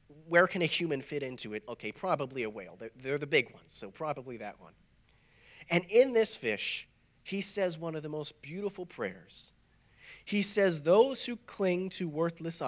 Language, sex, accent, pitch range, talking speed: English, male, American, 130-175 Hz, 180 wpm